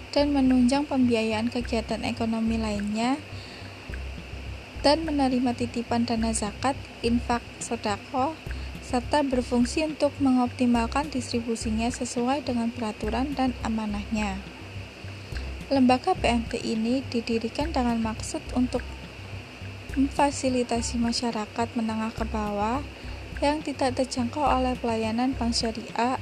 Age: 20-39